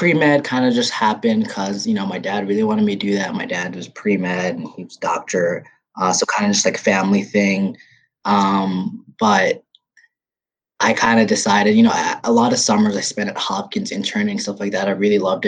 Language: English